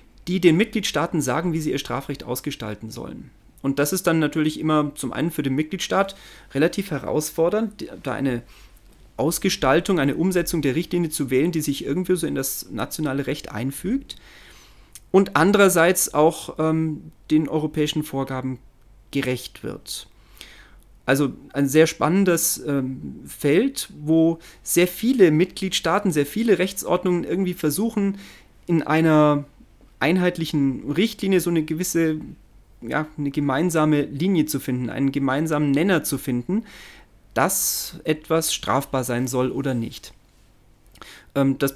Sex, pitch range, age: male, 135-170 Hz, 40-59